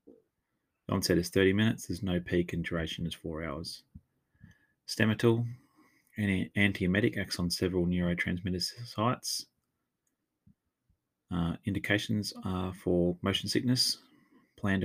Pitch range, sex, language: 90-105 Hz, male, English